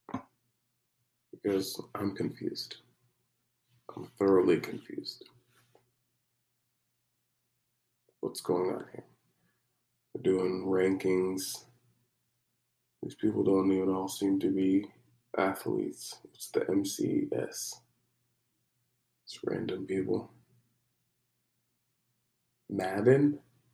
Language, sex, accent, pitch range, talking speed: English, male, American, 110-125 Hz, 75 wpm